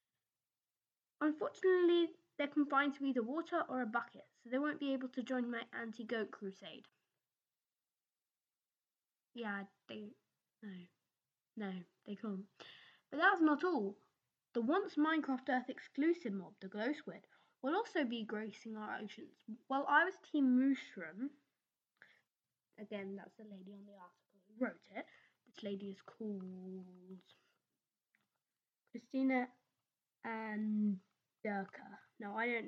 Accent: British